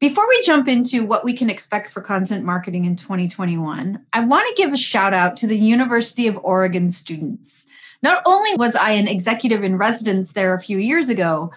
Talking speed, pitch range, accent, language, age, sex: 200 wpm, 195-275 Hz, American, English, 30-49, female